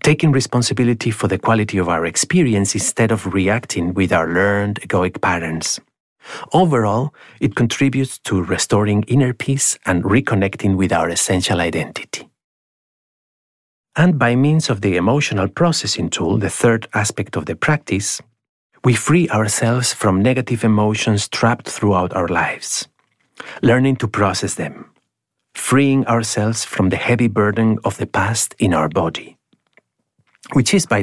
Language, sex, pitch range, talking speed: English, male, 100-130 Hz, 140 wpm